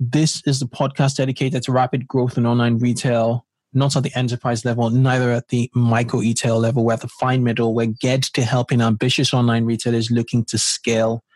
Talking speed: 195 wpm